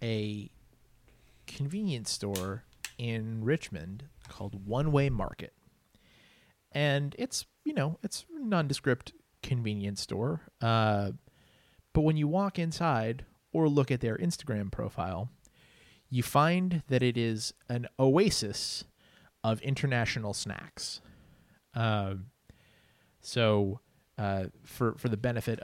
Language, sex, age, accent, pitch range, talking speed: English, male, 30-49, American, 105-135 Hz, 110 wpm